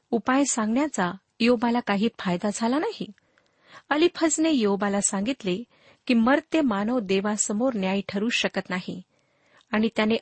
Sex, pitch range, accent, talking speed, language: female, 200-265 Hz, native, 125 wpm, Marathi